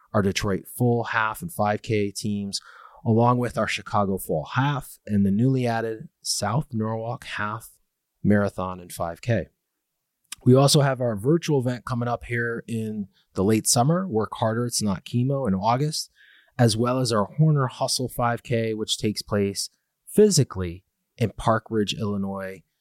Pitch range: 100-125 Hz